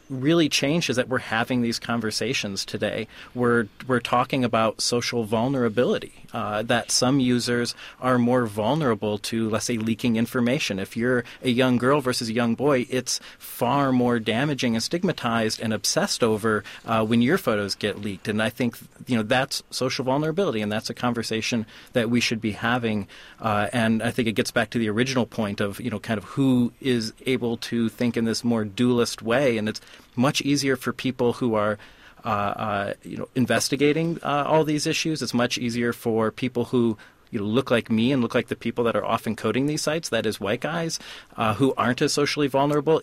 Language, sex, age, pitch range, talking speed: English, male, 30-49, 110-130 Hz, 200 wpm